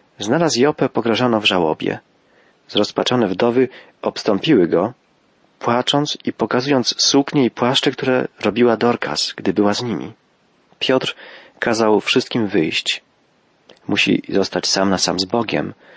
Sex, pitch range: male, 105-135 Hz